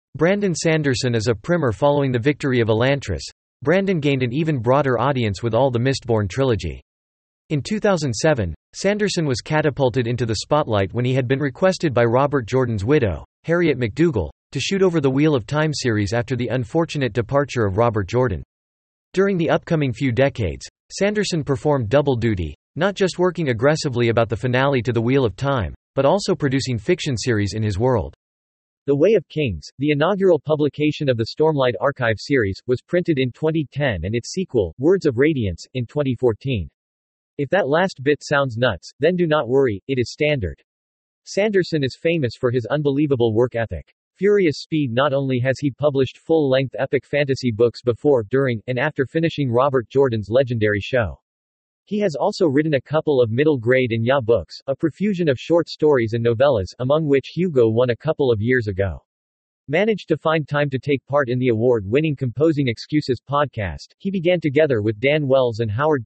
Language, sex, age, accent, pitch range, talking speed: English, male, 40-59, American, 115-150 Hz, 180 wpm